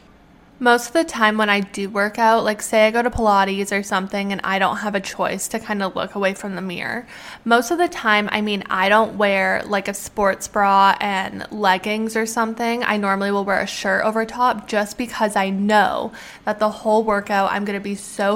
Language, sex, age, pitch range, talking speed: English, female, 20-39, 195-225 Hz, 225 wpm